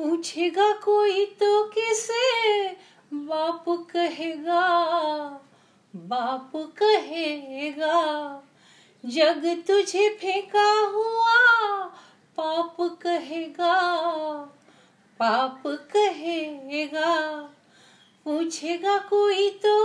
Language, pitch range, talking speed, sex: English, 280-345 Hz, 55 wpm, female